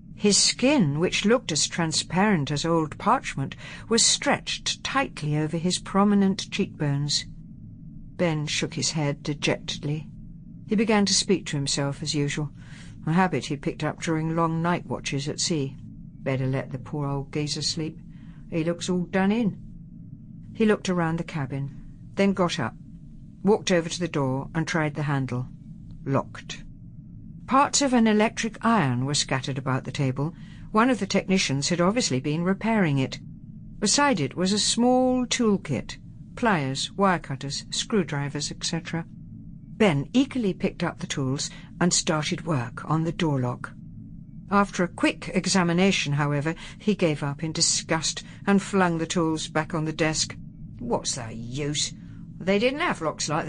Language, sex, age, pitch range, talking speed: English, female, 60-79, 145-190 Hz, 155 wpm